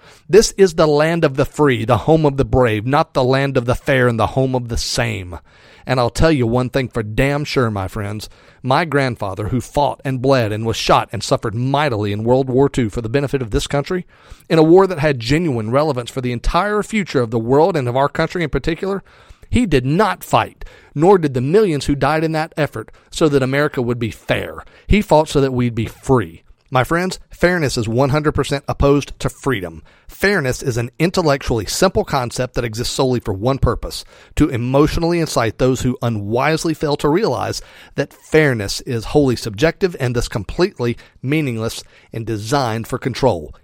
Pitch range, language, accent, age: 115-145 Hz, English, American, 40-59